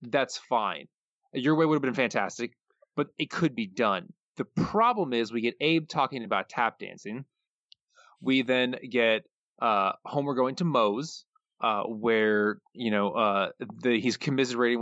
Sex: male